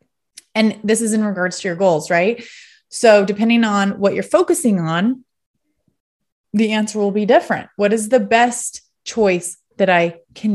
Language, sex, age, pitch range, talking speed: English, female, 30-49, 195-245 Hz, 165 wpm